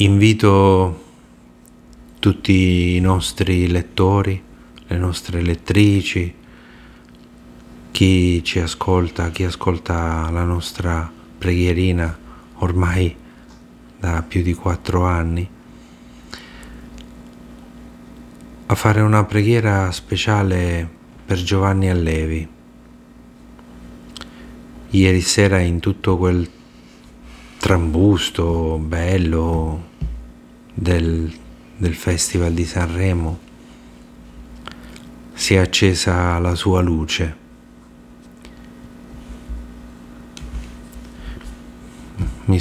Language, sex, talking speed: Italian, male, 70 wpm